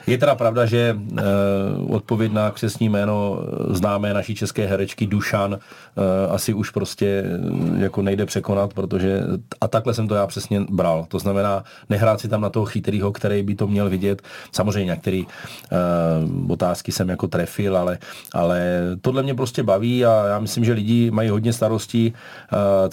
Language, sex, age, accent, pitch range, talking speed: Czech, male, 40-59, native, 100-115 Hz, 175 wpm